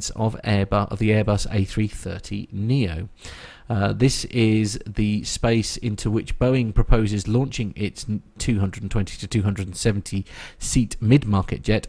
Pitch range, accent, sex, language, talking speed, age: 100-120 Hz, British, male, English, 110 wpm, 40-59